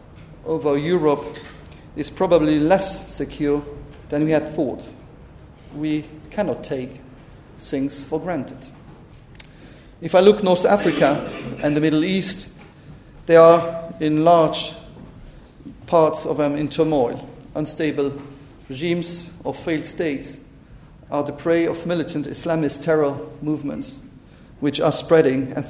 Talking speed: 120 wpm